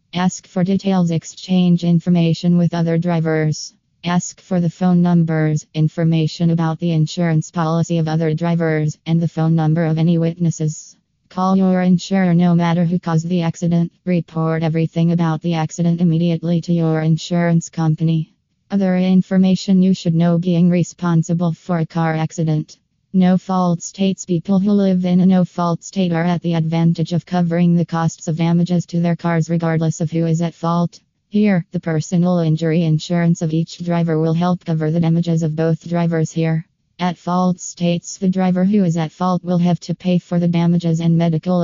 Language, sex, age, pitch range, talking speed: English, female, 20-39, 165-180 Hz, 175 wpm